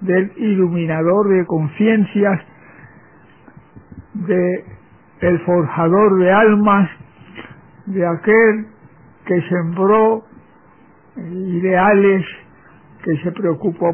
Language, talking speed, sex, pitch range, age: Spanish, 70 wpm, male, 170-205 Hz, 60-79